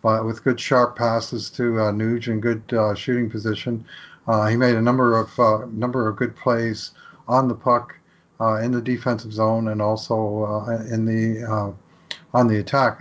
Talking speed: 190 wpm